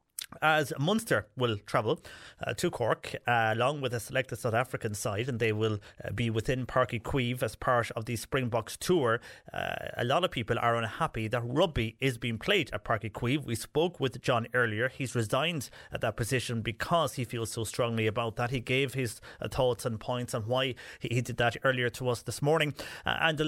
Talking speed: 210 wpm